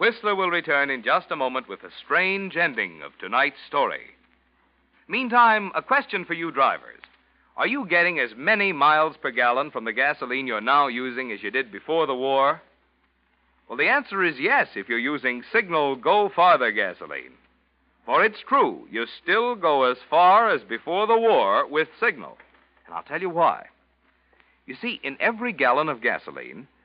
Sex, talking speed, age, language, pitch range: male, 170 wpm, 60-79, English, 135-215 Hz